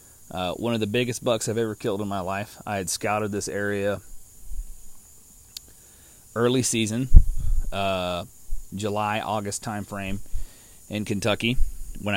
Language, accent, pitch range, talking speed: English, American, 100-120 Hz, 130 wpm